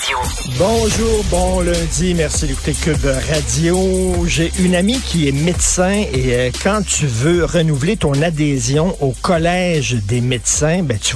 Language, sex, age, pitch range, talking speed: French, male, 50-69, 110-185 Hz, 140 wpm